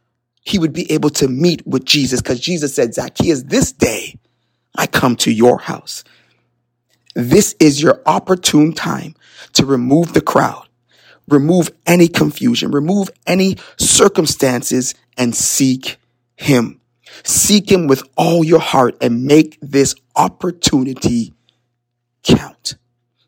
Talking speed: 125 wpm